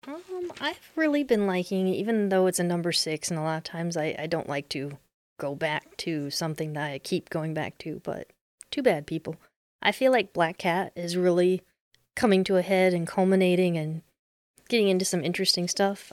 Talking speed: 200 wpm